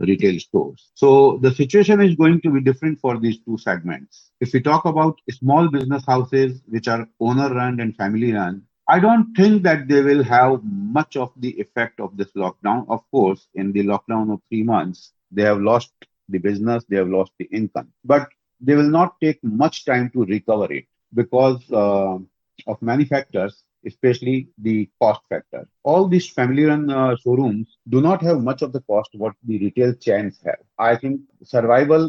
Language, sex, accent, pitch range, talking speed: English, male, Indian, 105-135 Hz, 180 wpm